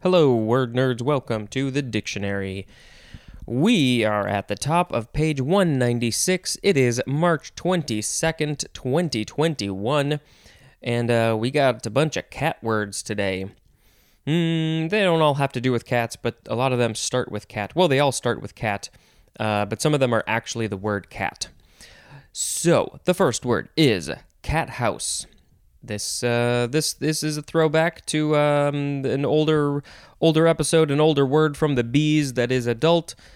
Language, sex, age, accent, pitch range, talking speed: English, male, 20-39, American, 115-150 Hz, 165 wpm